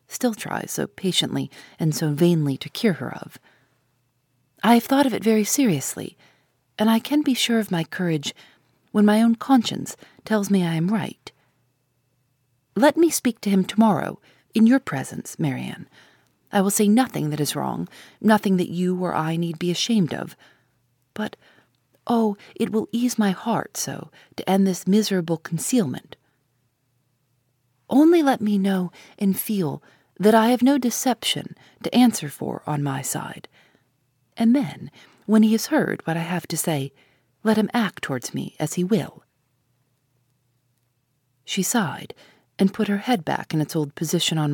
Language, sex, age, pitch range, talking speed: English, female, 40-59, 135-220 Hz, 165 wpm